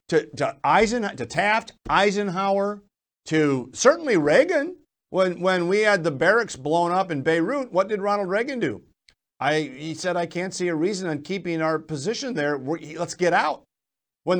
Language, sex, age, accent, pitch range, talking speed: English, male, 50-69, American, 150-205 Hz, 175 wpm